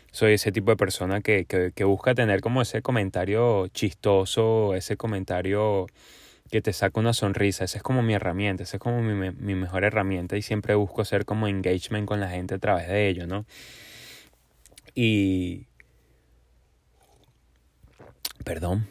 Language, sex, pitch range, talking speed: Spanish, male, 95-110 Hz, 155 wpm